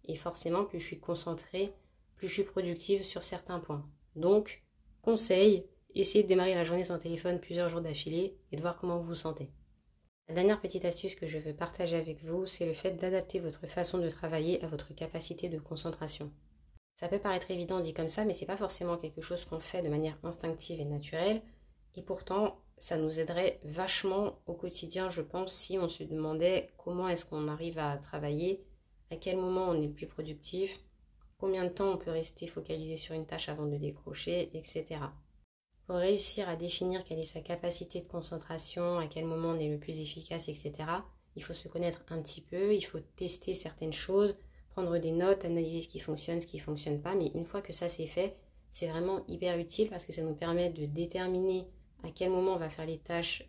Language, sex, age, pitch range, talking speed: French, female, 20-39, 160-185 Hz, 210 wpm